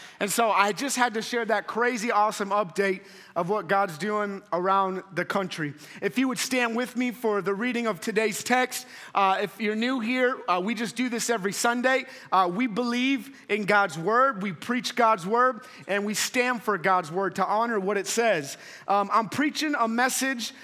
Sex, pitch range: male, 200-245 Hz